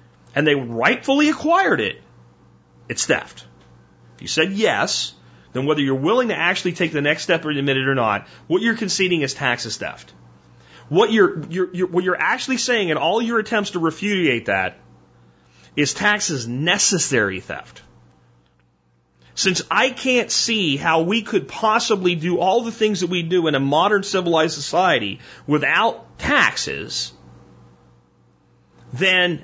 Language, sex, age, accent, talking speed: English, male, 30-49, American, 150 wpm